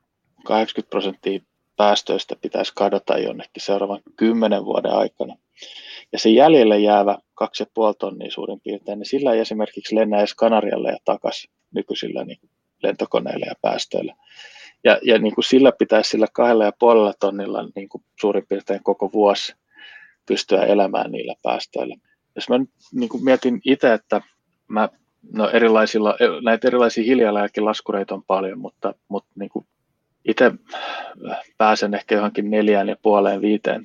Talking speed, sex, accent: 145 wpm, male, native